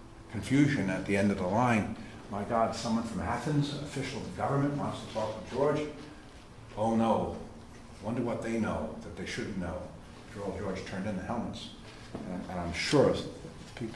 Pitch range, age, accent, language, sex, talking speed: 95-115 Hz, 50-69, American, English, male, 170 wpm